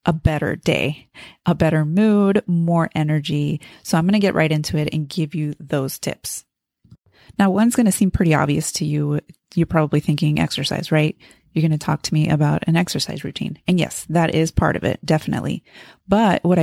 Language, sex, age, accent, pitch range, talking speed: English, female, 30-49, American, 155-185 Hz, 200 wpm